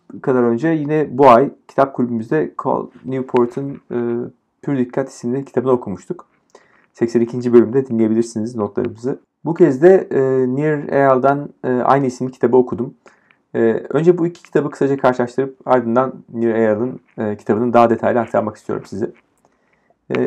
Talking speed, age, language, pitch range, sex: 140 wpm, 40-59, Turkish, 115-135 Hz, male